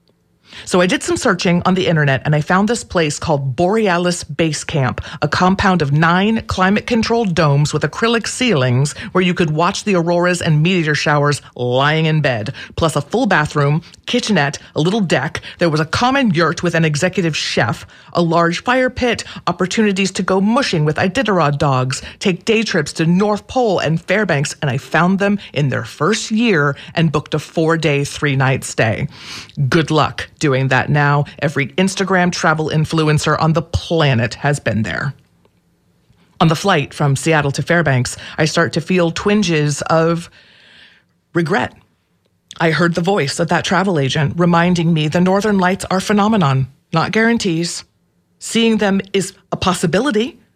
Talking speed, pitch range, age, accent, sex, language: 165 wpm, 150-190 Hz, 40-59, American, female, English